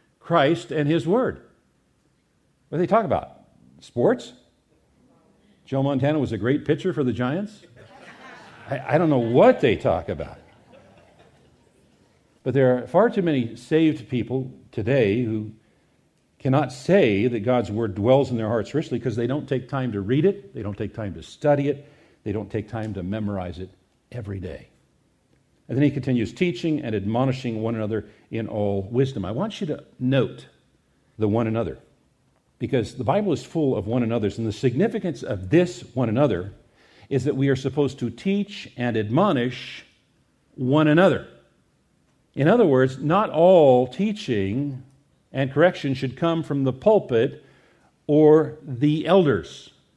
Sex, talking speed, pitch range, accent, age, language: male, 160 wpm, 115-150 Hz, American, 50-69, English